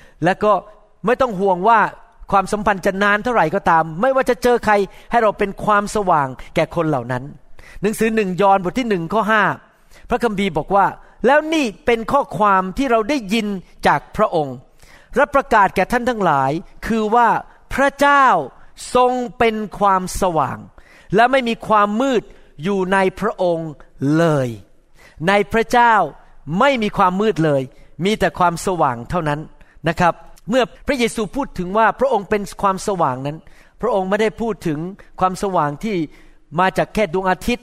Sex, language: male, Thai